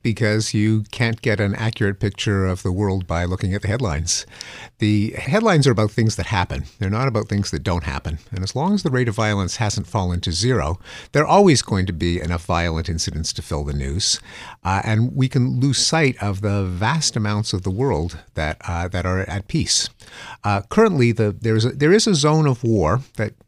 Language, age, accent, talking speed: English, 50-69, American, 215 wpm